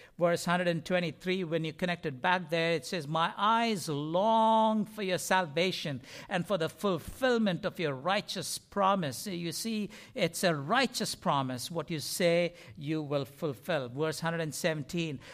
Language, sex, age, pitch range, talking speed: English, male, 60-79, 135-185 Hz, 150 wpm